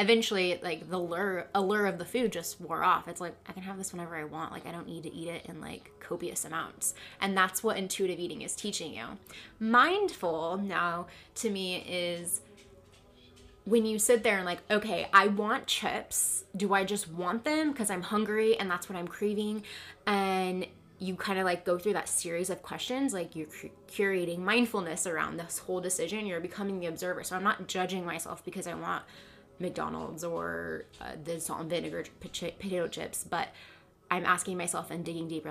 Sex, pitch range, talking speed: female, 170-200 Hz, 190 wpm